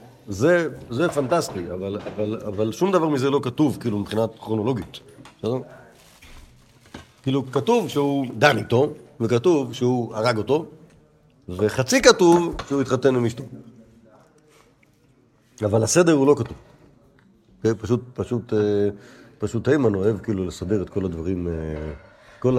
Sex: male